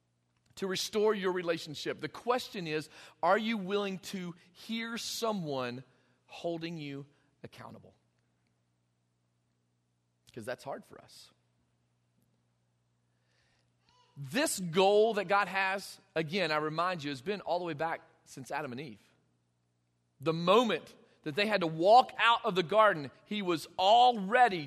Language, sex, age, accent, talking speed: English, male, 40-59, American, 130 wpm